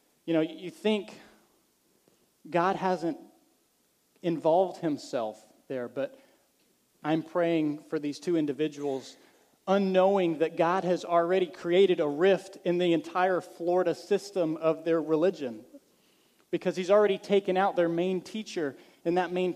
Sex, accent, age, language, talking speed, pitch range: male, American, 40-59, English, 130 wpm, 155-190 Hz